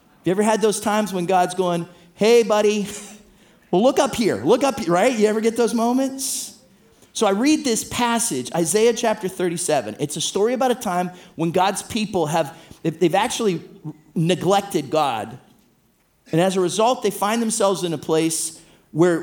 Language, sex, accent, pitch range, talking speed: English, male, American, 170-220 Hz, 170 wpm